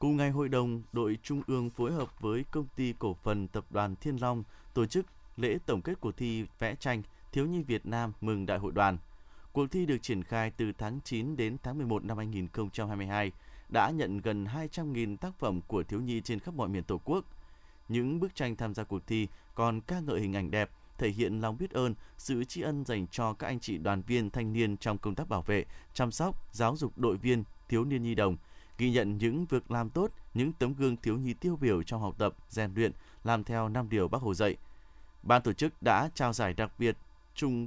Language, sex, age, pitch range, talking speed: Vietnamese, male, 20-39, 100-125 Hz, 225 wpm